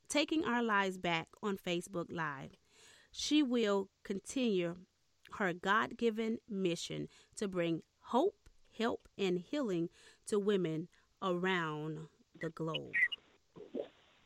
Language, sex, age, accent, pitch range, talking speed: English, female, 30-49, American, 175-230 Hz, 100 wpm